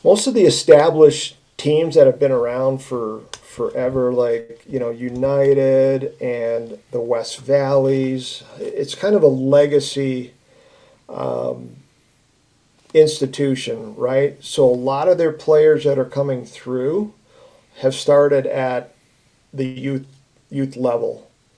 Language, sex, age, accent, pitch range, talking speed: English, male, 40-59, American, 130-165 Hz, 120 wpm